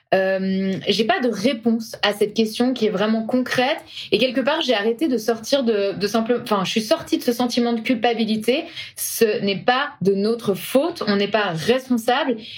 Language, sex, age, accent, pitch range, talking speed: French, female, 20-39, French, 215-260 Hz, 195 wpm